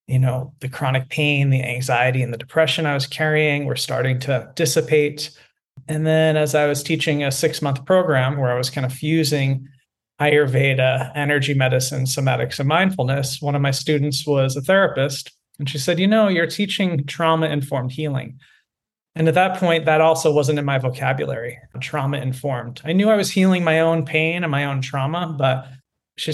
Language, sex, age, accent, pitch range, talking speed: English, male, 30-49, American, 130-155 Hz, 185 wpm